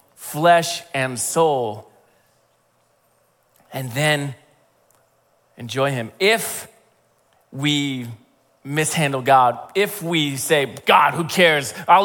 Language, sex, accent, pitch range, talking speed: English, male, American, 145-190 Hz, 90 wpm